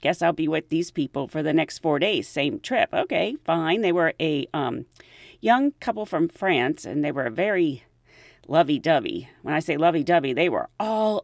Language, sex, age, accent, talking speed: English, female, 40-59, American, 185 wpm